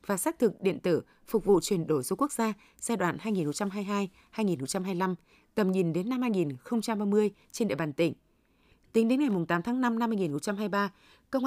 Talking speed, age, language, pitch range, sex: 175 wpm, 20-39, Vietnamese, 185-235 Hz, female